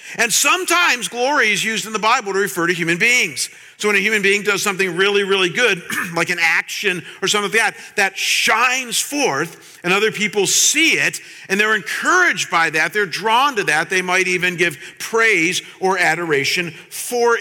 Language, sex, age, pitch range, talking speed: English, male, 50-69, 185-235 Hz, 190 wpm